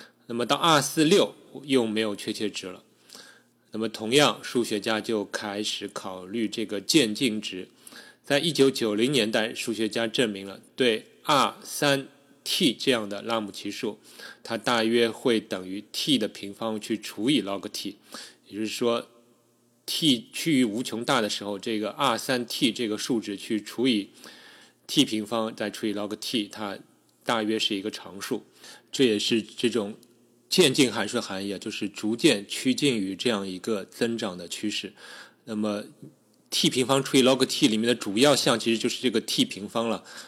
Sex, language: male, Chinese